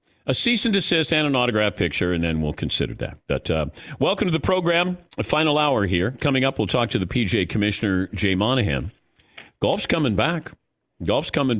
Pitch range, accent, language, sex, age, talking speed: 105-155 Hz, American, English, male, 50-69, 195 wpm